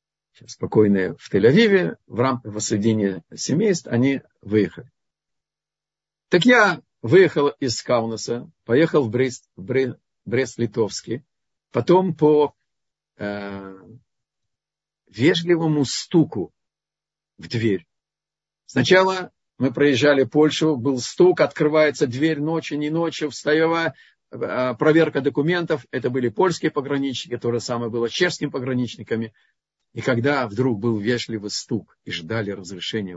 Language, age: Russian, 50-69